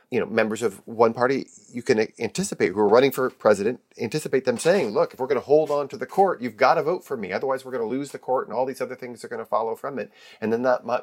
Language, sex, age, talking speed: English, male, 40-59, 295 wpm